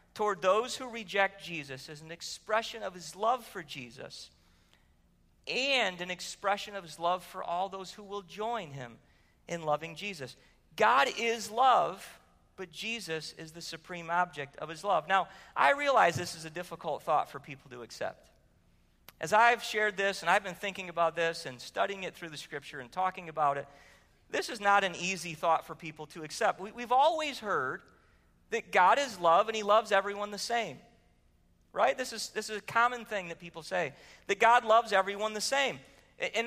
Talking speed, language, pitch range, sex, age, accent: 185 wpm, English, 155-235 Hz, male, 40-59, American